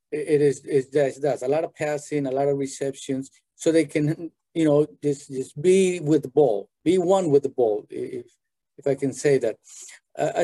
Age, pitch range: 50-69, 135-165 Hz